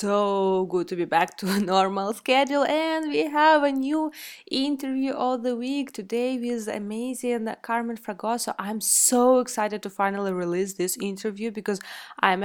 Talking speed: 160 wpm